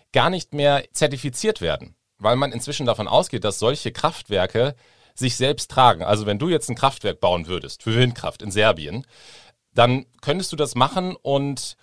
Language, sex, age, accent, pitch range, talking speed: German, male, 40-59, German, 100-130 Hz, 170 wpm